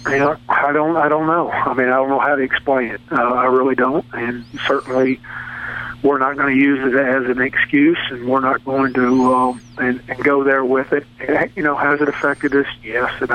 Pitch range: 130-145 Hz